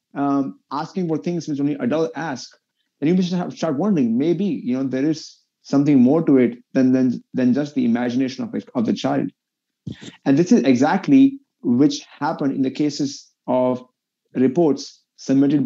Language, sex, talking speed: English, male, 175 wpm